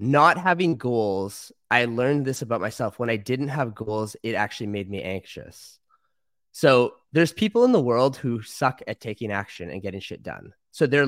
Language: English